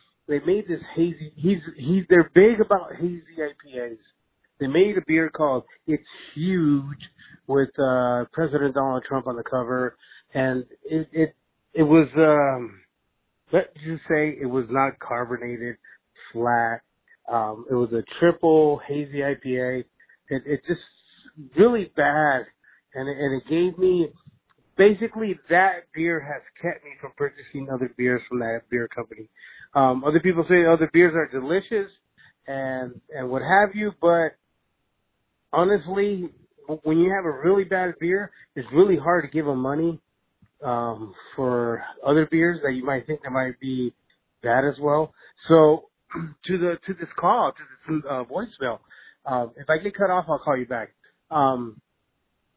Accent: American